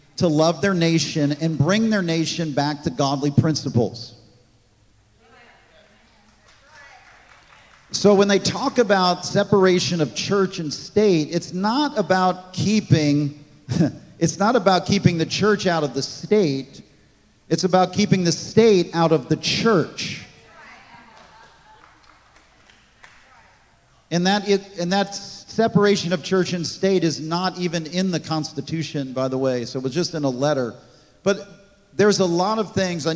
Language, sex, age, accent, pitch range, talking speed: English, male, 40-59, American, 145-180 Hz, 145 wpm